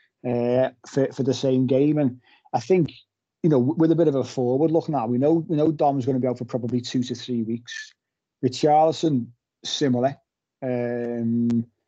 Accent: British